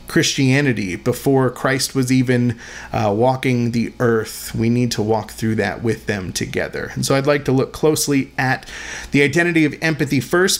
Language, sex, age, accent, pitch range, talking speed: English, male, 30-49, American, 120-155 Hz, 175 wpm